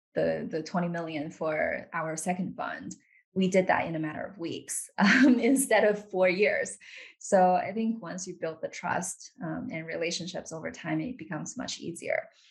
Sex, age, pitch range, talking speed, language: female, 20-39, 170-210 Hz, 180 wpm, English